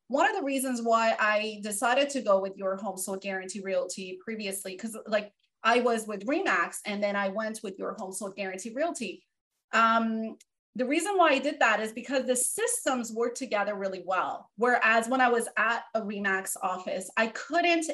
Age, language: 30-49, English